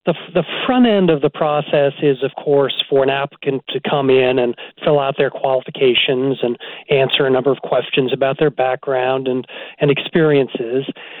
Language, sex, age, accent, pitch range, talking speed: English, male, 40-59, American, 135-160 Hz, 175 wpm